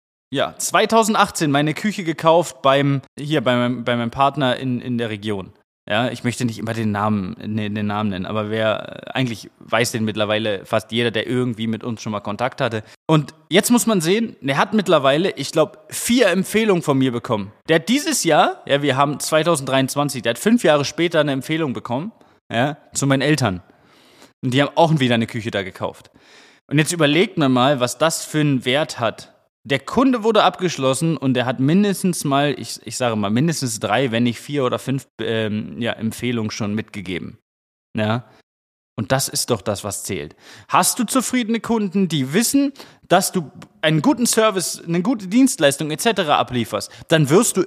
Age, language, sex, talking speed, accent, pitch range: 20-39, German, male, 190 wpm, German, 115-170 Hz